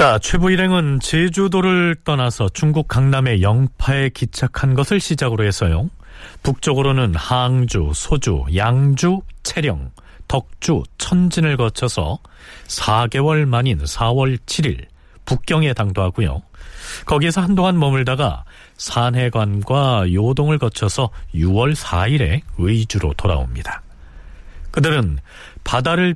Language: Korean